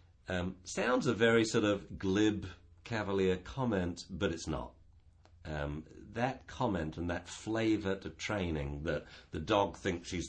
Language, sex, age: English, male, 50-69